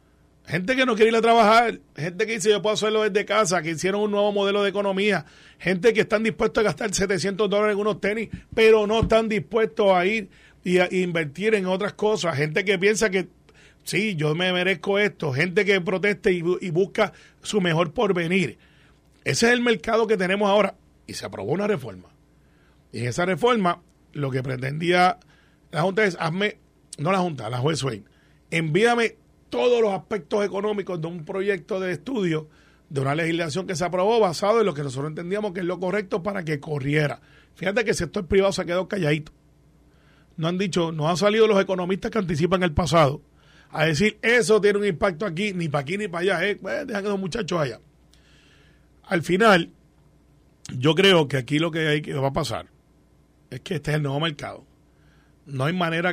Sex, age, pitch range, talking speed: male, 30-49, 160-210 Hz, 195 wpm